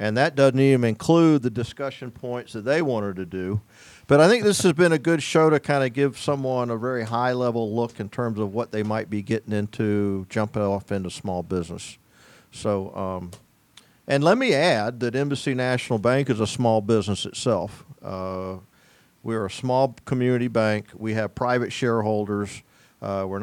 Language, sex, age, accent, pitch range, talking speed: English, male, 40-59, American, 105-135 Hz, 185 wpm